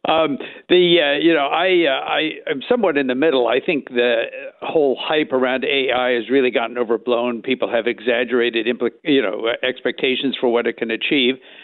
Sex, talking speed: male, 180 wpm